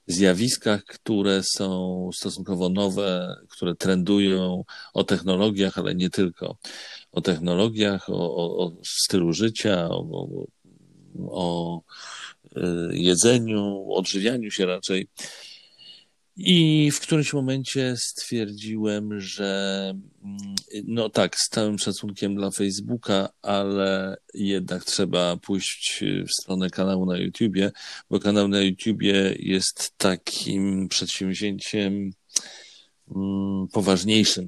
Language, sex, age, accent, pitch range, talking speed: Polish, male, 40-59, native, 90-105 Hz, 95 wpm